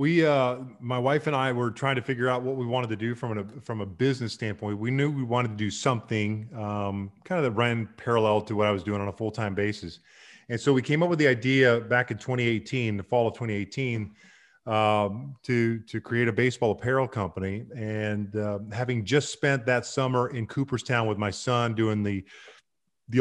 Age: 30-49